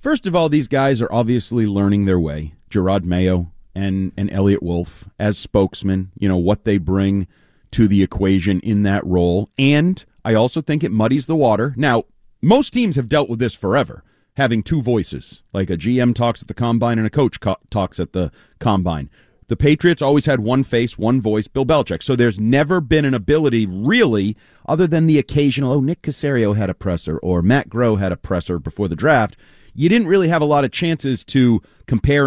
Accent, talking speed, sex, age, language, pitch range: American, 205 wpm, male, 40-59, English, 100-135 Hz